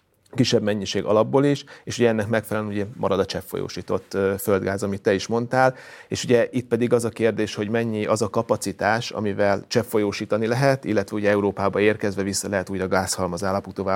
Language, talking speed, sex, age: Hungarian, 180 wpm, male, 30-49